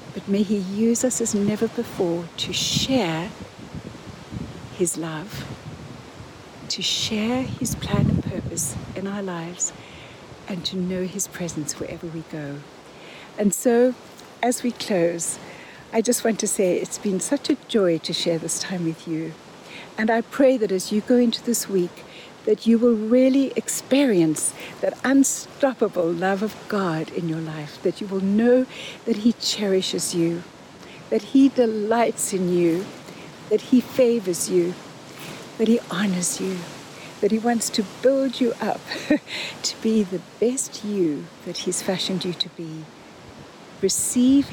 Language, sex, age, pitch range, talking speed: English, female, 60-79, 175-230 Hz, 150 wpm